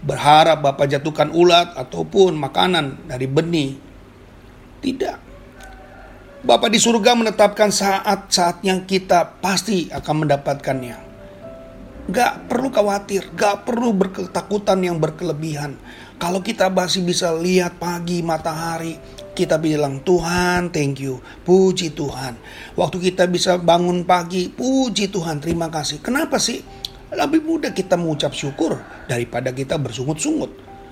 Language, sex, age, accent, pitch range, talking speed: Indonesian, male, 40-59, native, 160-205 Hz, 115 wpm